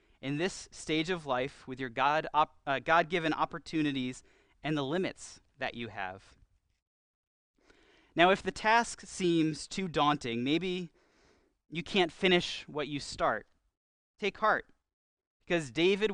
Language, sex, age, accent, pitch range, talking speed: English, male, 30-49, American, 130-180 Hz, 135 wpm